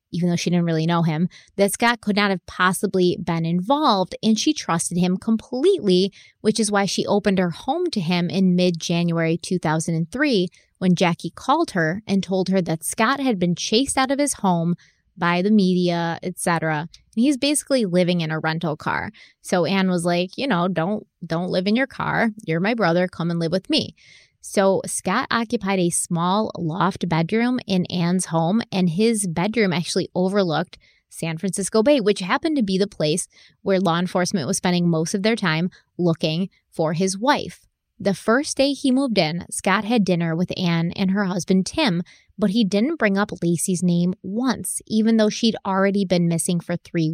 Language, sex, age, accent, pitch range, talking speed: English, female, 20-39, American, 175-220 Hz, 185 wpm